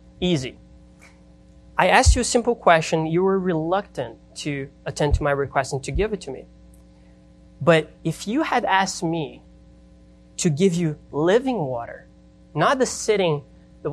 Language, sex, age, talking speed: English, male, 20-39, 155 wpm